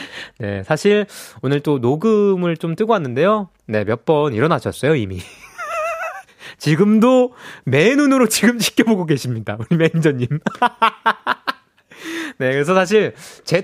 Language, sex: Korean, male